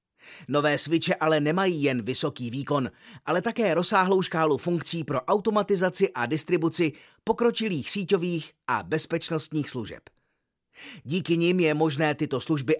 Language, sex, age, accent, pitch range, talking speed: Czech, male, 30-49, native, 150-185 Hz, 125 wpm